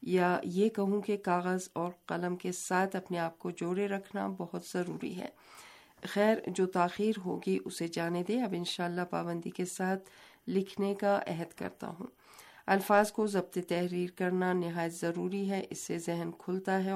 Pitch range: 175-195 Hz